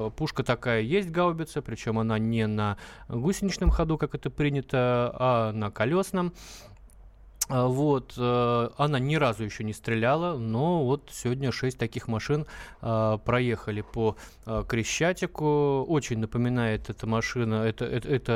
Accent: native